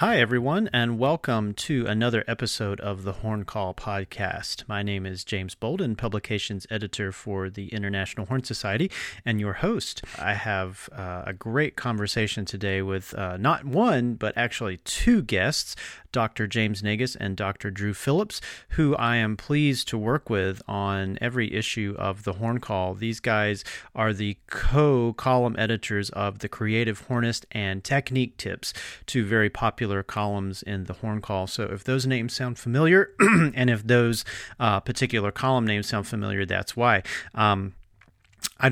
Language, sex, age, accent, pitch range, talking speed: English, male, 40-59, American, 100-120 Hz, 160 wpm